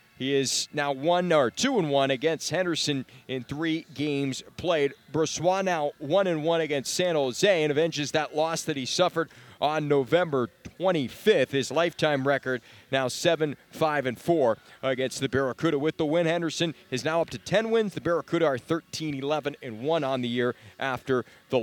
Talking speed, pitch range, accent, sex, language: 175 wpm, 140-180 Hz, American, male, English